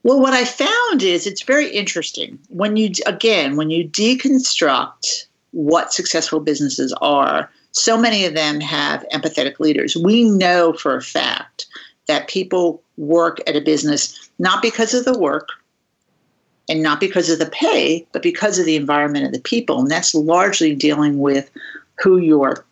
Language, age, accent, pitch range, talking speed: English, 50-69, American, 155-230 Hz, 165 wpm